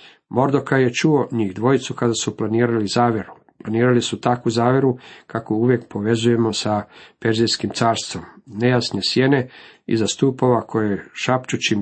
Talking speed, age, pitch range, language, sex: 125 wpm, 50-69, 110-135 Hz, Croatian, male